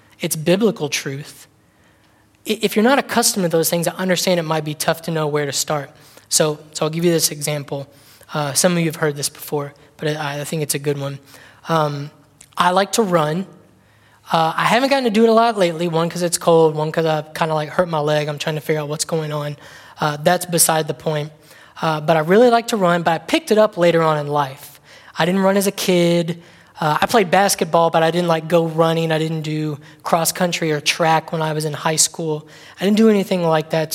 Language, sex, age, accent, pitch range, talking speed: English, male, 20-39, American, 155-185 Hz, 240 wpm